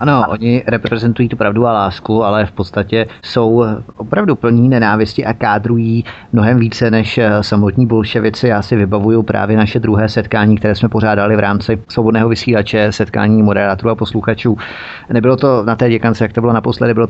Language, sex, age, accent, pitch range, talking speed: Czech, male, 30-49, native, 105-120 Hz, 170 wpm